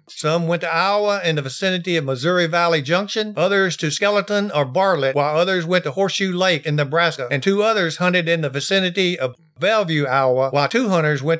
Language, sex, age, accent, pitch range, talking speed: English, male, 60-79, American, 145-185 Hz, 200 wpm